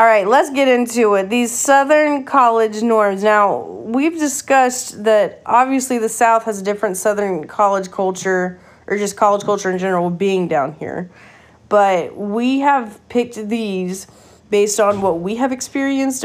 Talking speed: 160 wpm